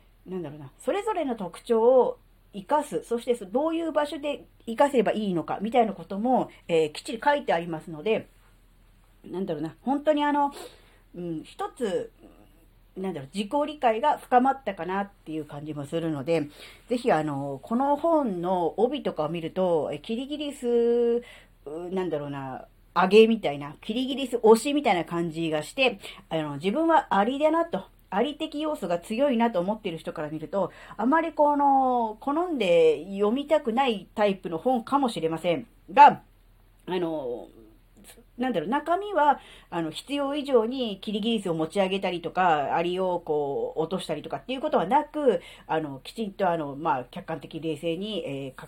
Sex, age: female, 40-59